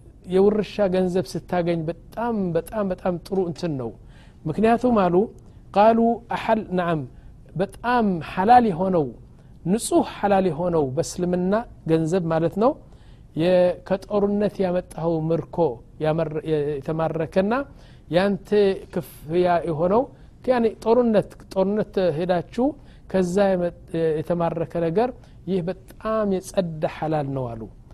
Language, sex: Amharic, male